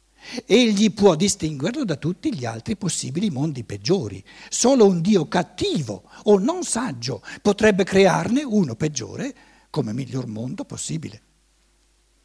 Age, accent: 60-79, native